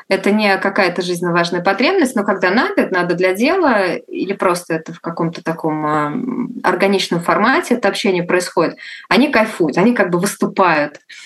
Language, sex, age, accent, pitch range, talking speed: Russian, female, 20-39, native, 170-205 Hz, 160 wpm